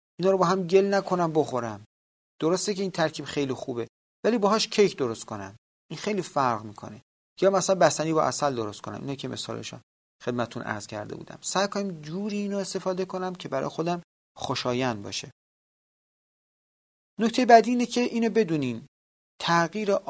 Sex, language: male, Persian